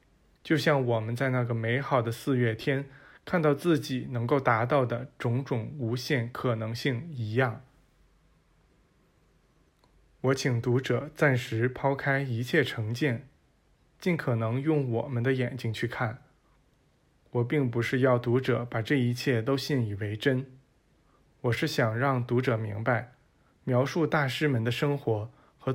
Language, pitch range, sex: Chinese, 120-145 Hz, male